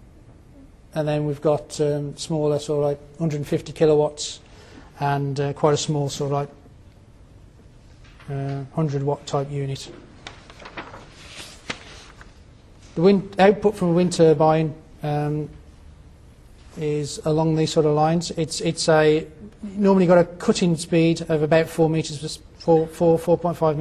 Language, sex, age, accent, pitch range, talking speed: English, male, 40-59, British, 145-165 Hz, 135 wpm